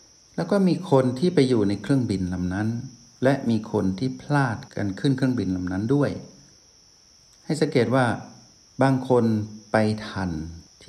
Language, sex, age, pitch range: Thai, male, 60-79, 100-130 Hz